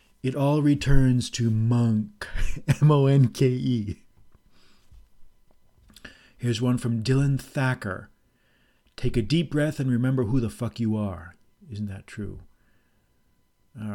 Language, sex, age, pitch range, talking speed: English, male, 40-59, 105-130 Hz, 130 wpm